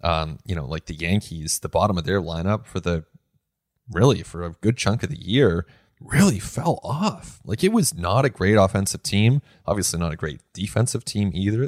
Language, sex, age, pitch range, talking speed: English, male, 20-39, 90-115 Hz, 200 wpm